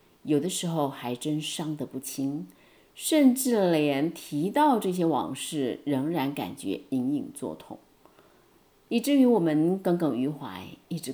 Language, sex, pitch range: Chinese, female, 145-210 Hz